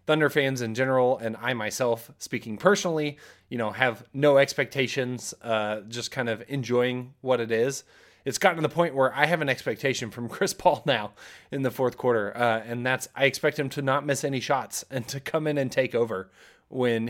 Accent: American